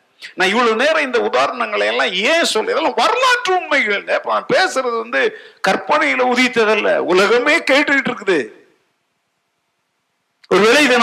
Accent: native